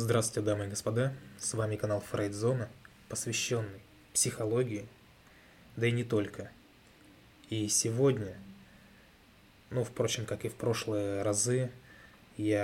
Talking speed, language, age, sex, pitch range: 115 wpm, Russian, 20-39, male, 100-120 Hz